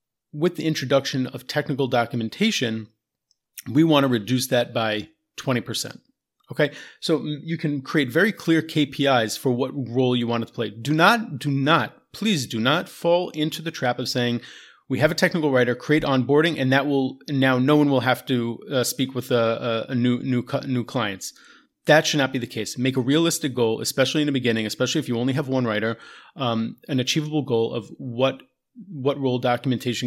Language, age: English, 30-49